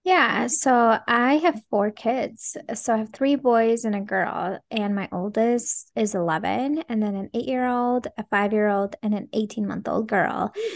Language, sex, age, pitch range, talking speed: English, female, 20-39, 210-250 Hz, 195 wpm